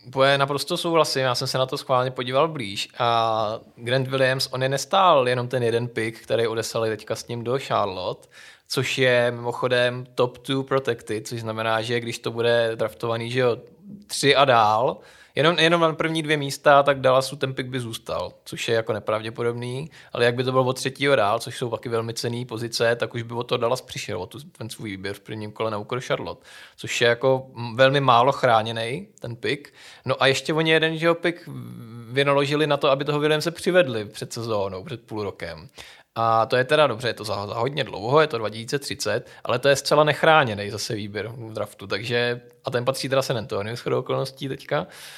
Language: Czech